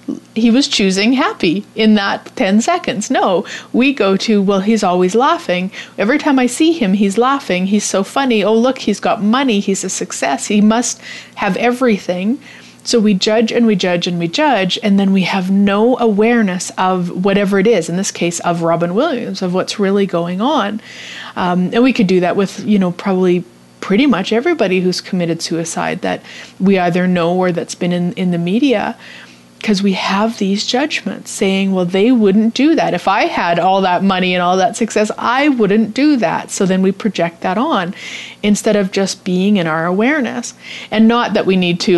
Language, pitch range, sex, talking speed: English, 180-230 Hz, female, 200 wpm